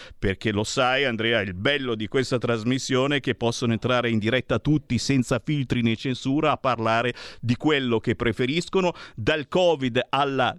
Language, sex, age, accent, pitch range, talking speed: Italian, male, 50-69, native, 125-195 Hz, 165 wpm